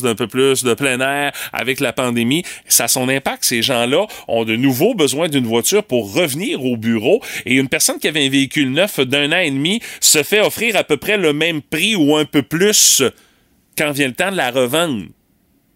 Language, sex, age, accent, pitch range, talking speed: French, male, 30-49, Canadian, 120-165 Hz, 215 wpm